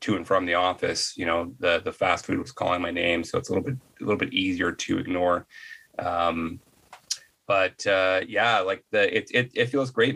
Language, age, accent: English, 30-49, American